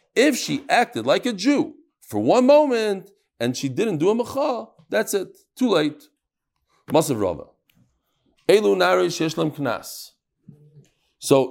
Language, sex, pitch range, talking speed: English, male, 145-240 Hz, 120 wpm